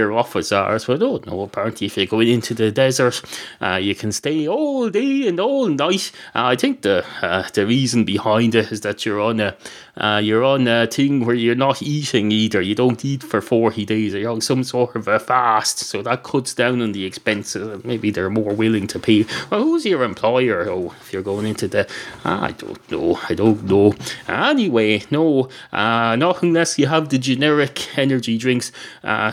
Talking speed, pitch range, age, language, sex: 210 wpm, 110-150 Hz, 30-49, English, male